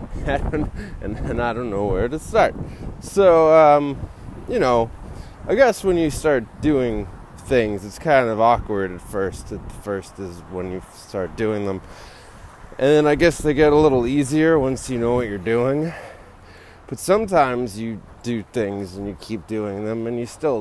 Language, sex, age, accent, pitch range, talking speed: English, male, 20-39, American, 95-130 Hz, 185 wpm